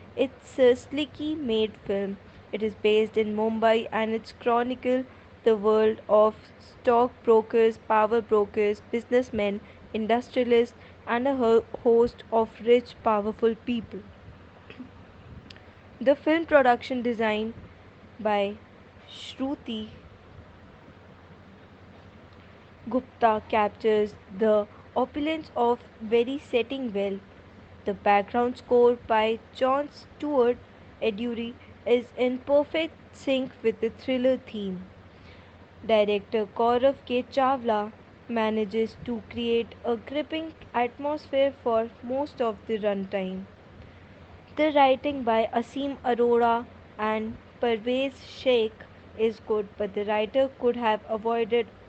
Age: 20-39